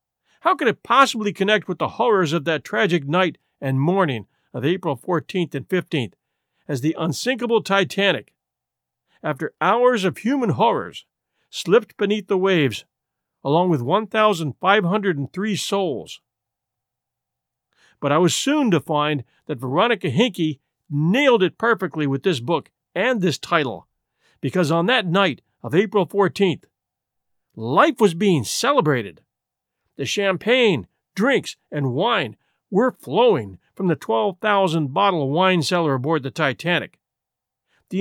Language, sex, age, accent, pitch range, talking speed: English, male, 50-69, American, 150-210 Hz, 130 wpm